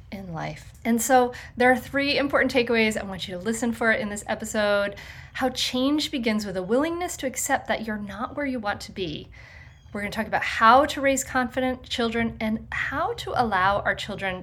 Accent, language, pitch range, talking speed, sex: American, English, 205-270 Hz, 210 wpm, female